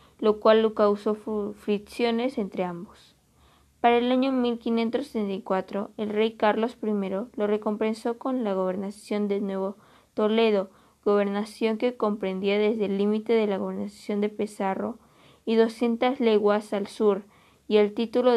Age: 20-39